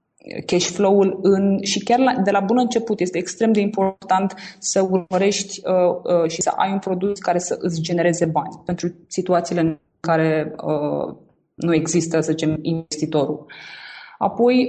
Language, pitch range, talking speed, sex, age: Romanian, 160-195 Hz, 160 wpm, female, 20-39